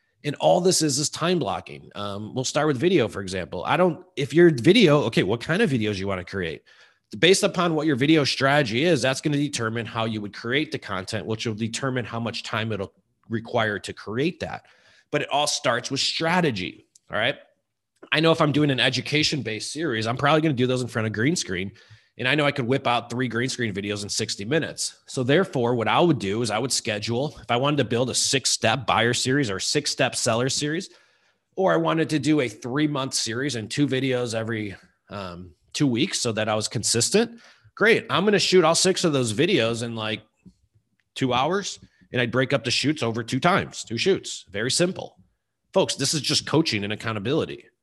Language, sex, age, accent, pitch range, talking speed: English, male, 30-49, American, 115-155 Hz, 220 wpm